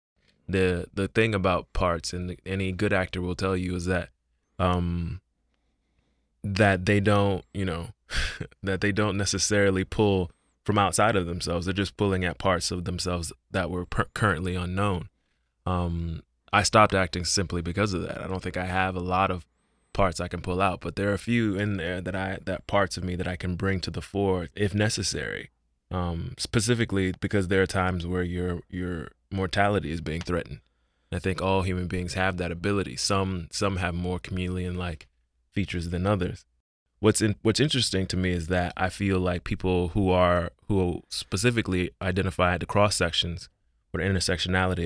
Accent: American